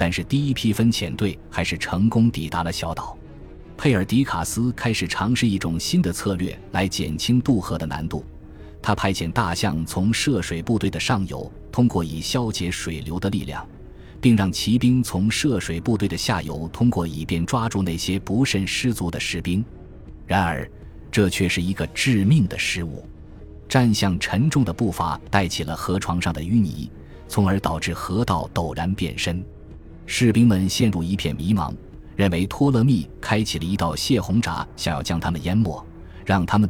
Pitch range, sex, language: 80-110 Hz, male, Chinese